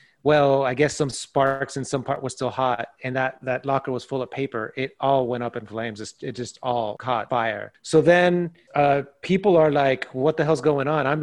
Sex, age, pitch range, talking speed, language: male, 30-49, 125-150 Hz, 225 wpm, English